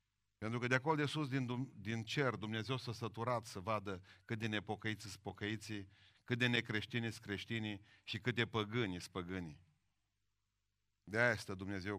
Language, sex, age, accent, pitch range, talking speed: Romanian, male, 40-59, native, 105-130 Hz, 170 wpm